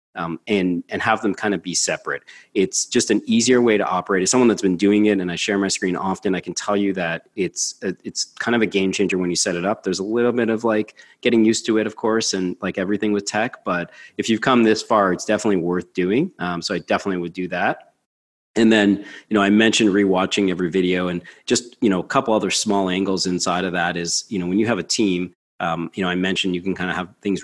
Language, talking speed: English, 260 wpm